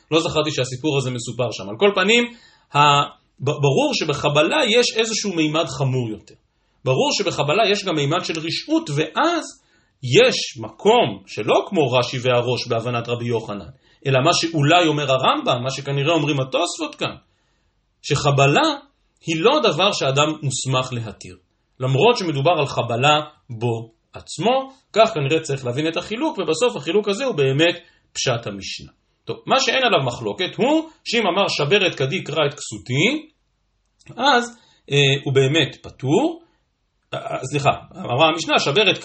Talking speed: 145 wpm